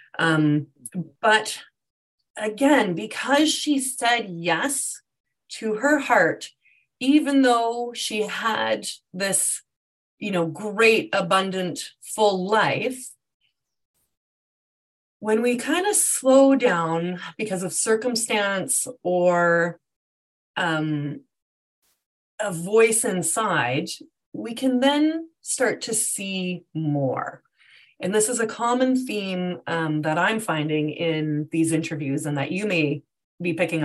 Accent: American